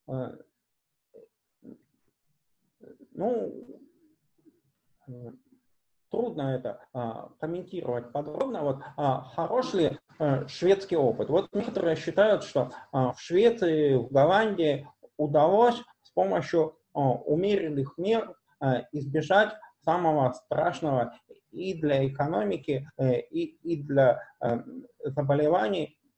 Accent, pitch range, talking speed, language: native, 135-200 Hz, 75 wpm, Russian